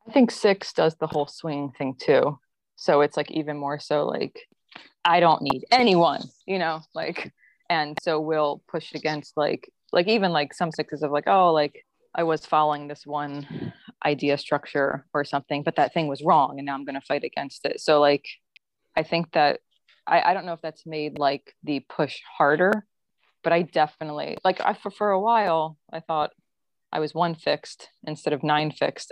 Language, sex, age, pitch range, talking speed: English, female, 20-39, 145-175 Hz, 195 wpm